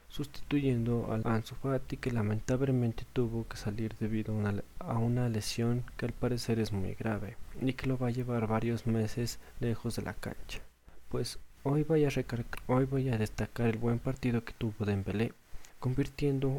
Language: Spanish